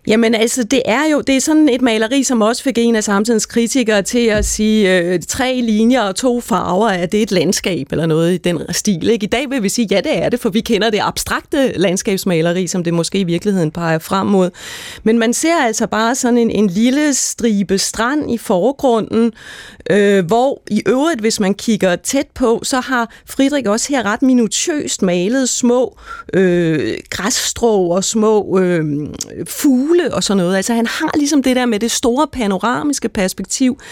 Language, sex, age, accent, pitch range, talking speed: Danish, female, 30-49, native, 205-260 Hz, 185 wpm